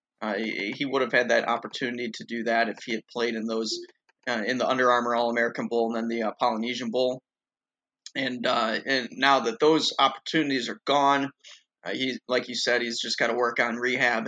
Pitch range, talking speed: 120-135 Hz, 215 wpm